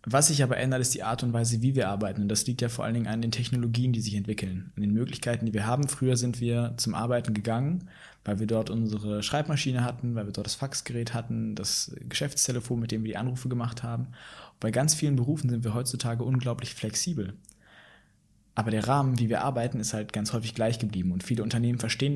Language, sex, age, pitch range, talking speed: German, male, 20-39, 110-125 Hz, 225 wpm